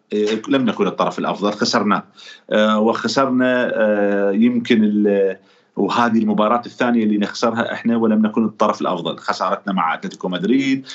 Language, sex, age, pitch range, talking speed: Arabic, male, 40-59, 105-130 Hz, 125 wpm